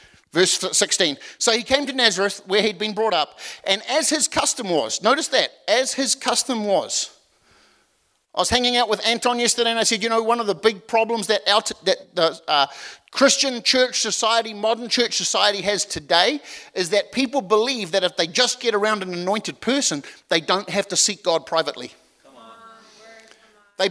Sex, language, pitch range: male, English, 185-235 Hz